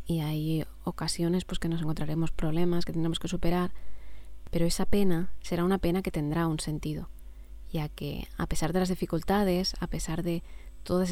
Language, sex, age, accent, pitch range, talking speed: Spanish, female, 20-39, Spanish, 155-180 Hz, 180 wpm